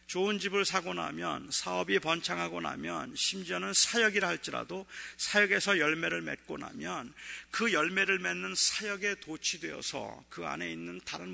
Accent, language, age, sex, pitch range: native, Korean, 40-59, male, 180-210 Hz